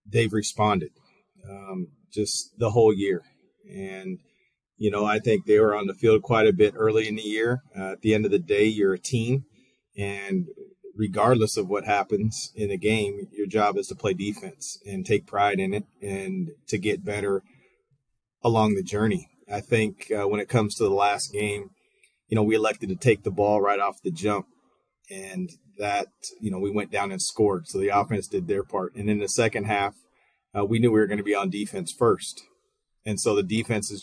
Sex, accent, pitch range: male, American, 100-115 Hz